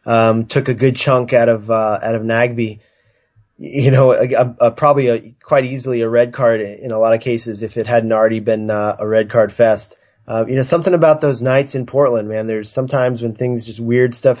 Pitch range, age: 110-120 Hz, 20-39